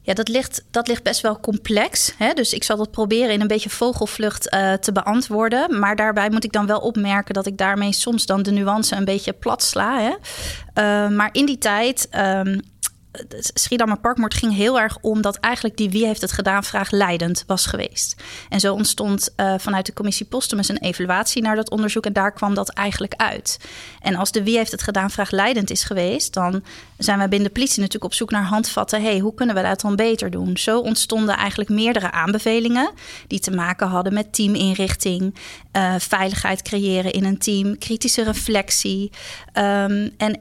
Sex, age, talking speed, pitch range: female, 30-49, 195 wpm, 195-225 Hz